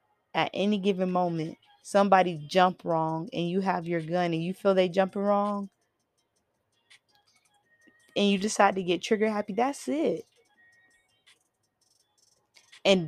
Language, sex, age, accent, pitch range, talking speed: English, female, 20-39, American, 185-250 Hz, 130 wpm